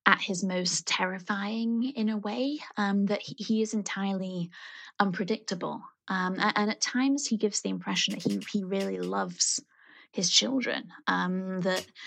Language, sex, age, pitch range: English, female, 20-39, 180-220 Hz